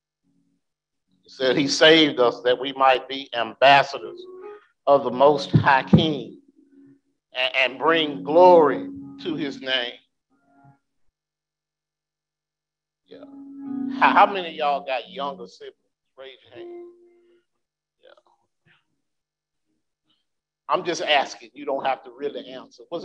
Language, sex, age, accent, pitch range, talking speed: English, male, 50-69, American, 150-225 Hz, 115 wpm